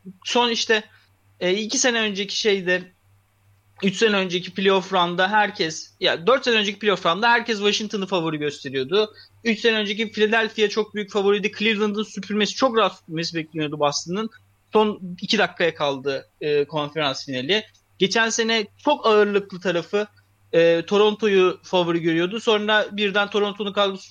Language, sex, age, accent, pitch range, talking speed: Turkish, male, 30-49, native, 160-220 Hz, 140 wpm